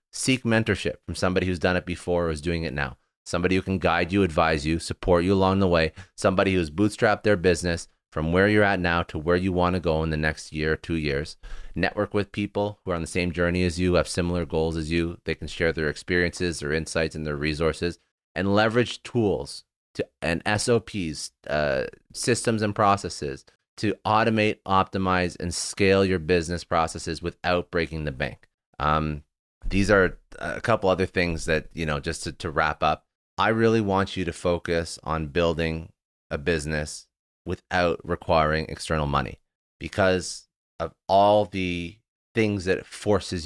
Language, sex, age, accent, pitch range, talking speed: English, male, 30-49, American, 80-95 Hz, 185 wpm